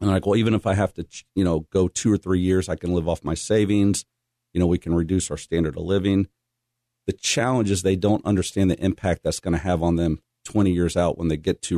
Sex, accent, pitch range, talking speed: male, American, 85-110 Hz, 265 wpm